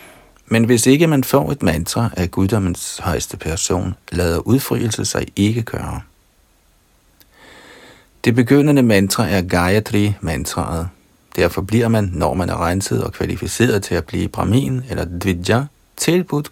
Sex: male